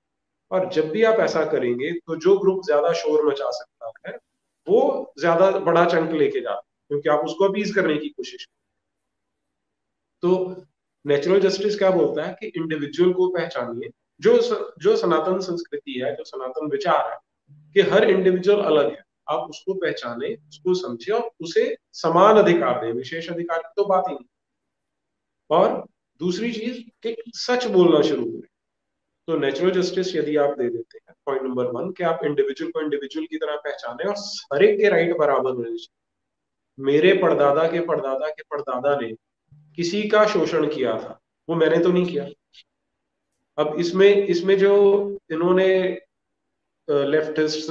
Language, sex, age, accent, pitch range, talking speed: English, male, 40-59, Indian, 150-195 Hz, 130 wpm